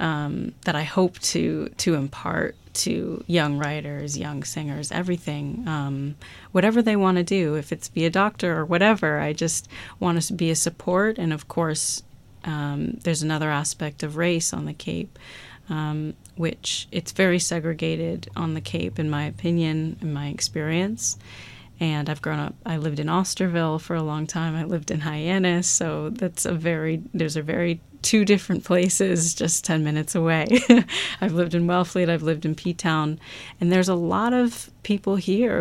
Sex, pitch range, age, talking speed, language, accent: female, 150-175 Hz, 30-49, 175 wpm, English, American